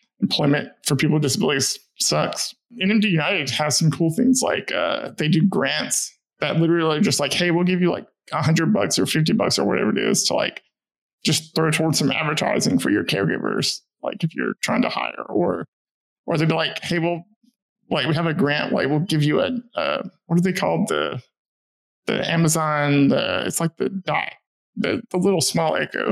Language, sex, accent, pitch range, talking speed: English, male, American, 155-200 Hz, 205 wpm